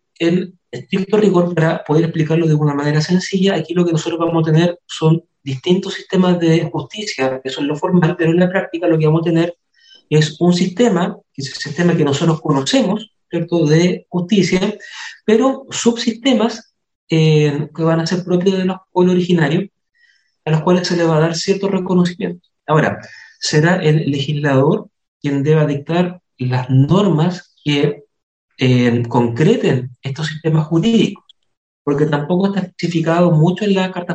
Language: Spanish